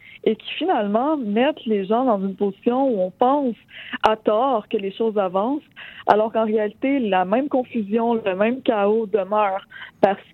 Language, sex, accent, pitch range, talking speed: French, female, Canadian, 205-245 Hz, 170 wpm